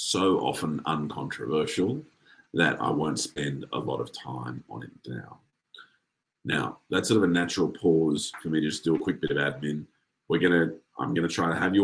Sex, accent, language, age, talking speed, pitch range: male, Australian, English, 30-49, 210 wpm, 75-85 Hz